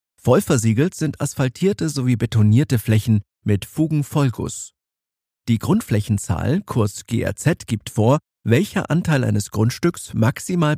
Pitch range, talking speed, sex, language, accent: 105-145 Hz, 105 wpm, male, German, German